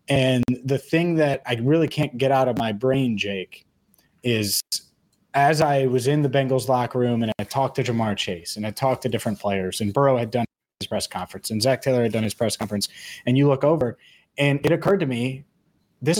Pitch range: 120-145 Hz